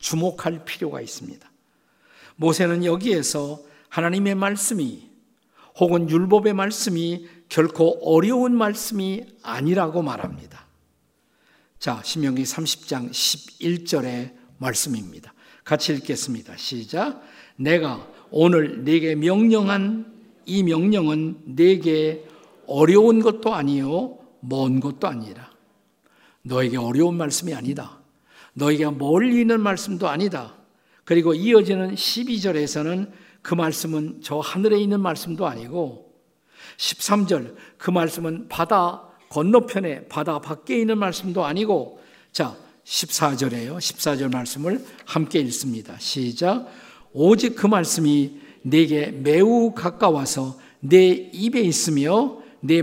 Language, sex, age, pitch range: Korean, male, 50-69, 145-195 Hz